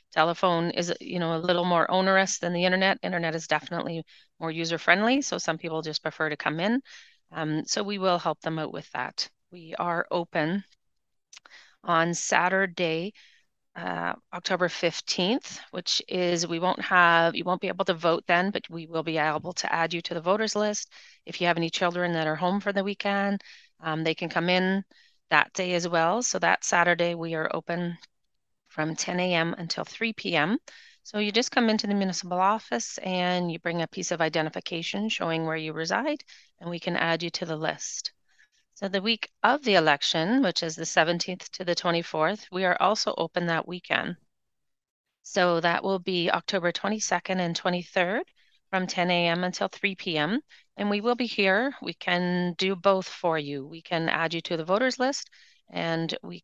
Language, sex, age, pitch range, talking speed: English, female, 30-49, 165-195 Hz, 190 wpm